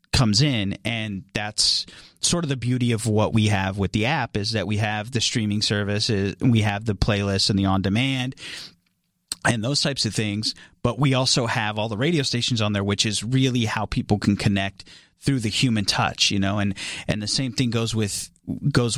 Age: 30-49